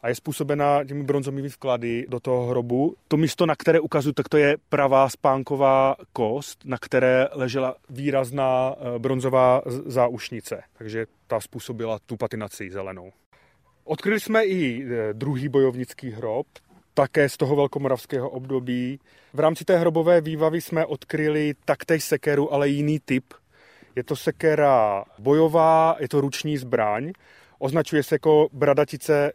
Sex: male